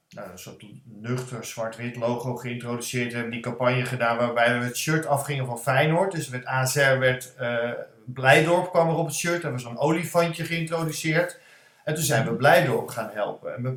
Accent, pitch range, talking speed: Dutch, 125-165 Hz, 190 wpm